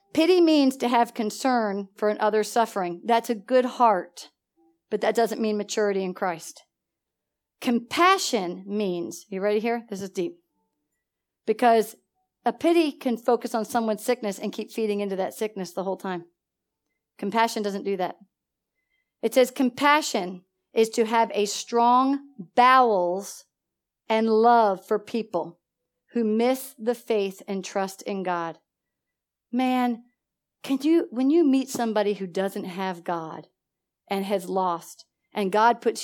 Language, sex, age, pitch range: English, female, 50-69, 195-250 Hz